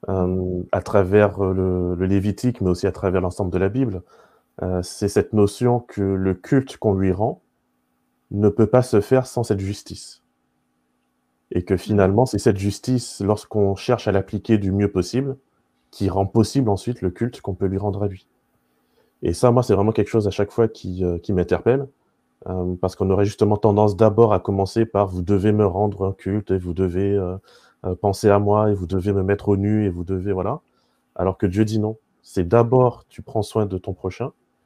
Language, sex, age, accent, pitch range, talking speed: French, male, 20-39, French, 95-110 Hz, 210 wpm